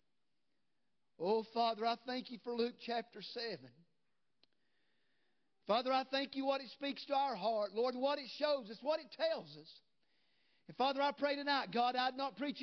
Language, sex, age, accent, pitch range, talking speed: English, male, 50-69, American, 225-305 Hz, 175 wpm